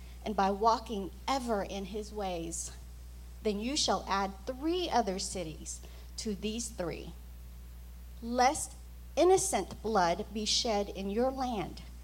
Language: English